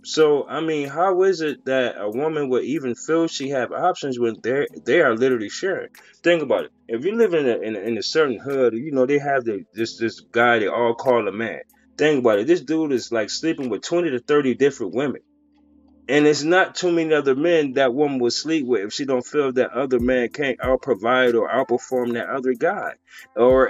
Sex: male